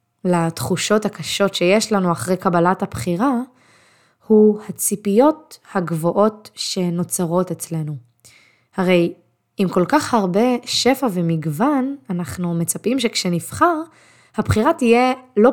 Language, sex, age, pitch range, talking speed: Hebrew, female, 20-39, 180-250 Hz, 95 wpm